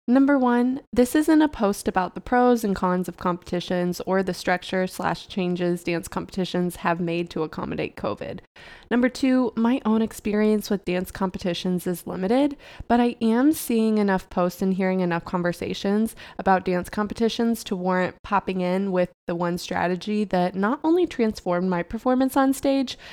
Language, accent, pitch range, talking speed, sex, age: English, American, 185-245 Hz, 165 wpm, female, 20-39